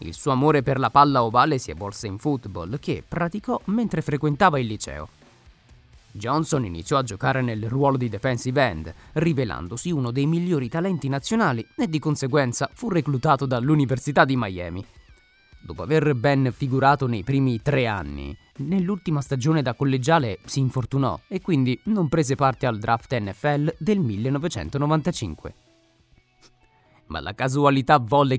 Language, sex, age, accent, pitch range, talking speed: Italian, male, 30-49, native, 120-150 Hz, 145 wpm